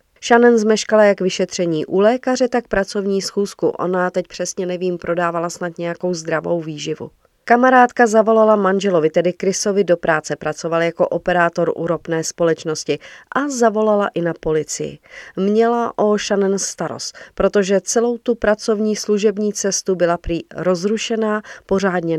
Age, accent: 40-59, native